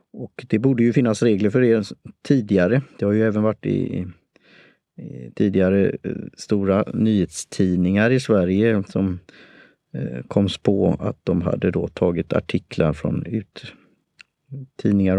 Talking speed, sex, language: 130 wpm, male, Swedish